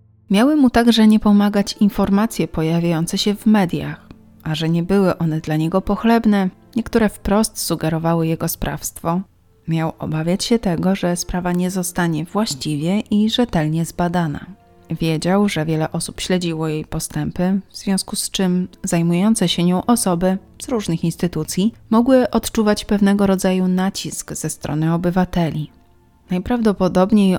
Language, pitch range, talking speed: Polish, 165-205 Hz, 135 wpm